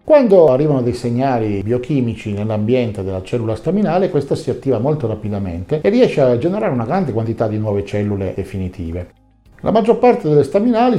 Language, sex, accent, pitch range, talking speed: Italian, male, native, 105-140 Hz, 165 wpm